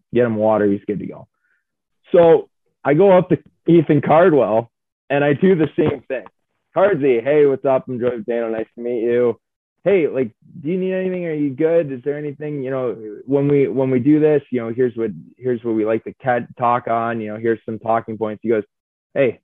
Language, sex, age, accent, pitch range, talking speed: English, male, 20-39, American, 115-150 Hz, 225 wpm